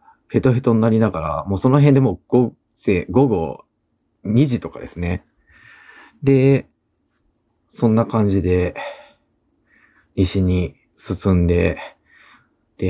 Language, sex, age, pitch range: Japanese, male, 40-59, 85-130 Hz